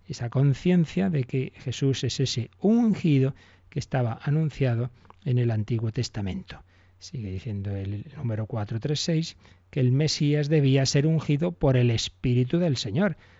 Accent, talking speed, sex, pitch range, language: Spanish, 140 wpm, male, 105-145 Hz, Spanish